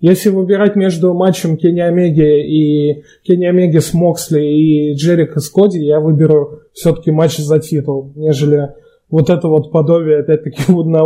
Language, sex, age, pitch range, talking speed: Russian, male, 20-39, 150-180 Hz, 150 wpm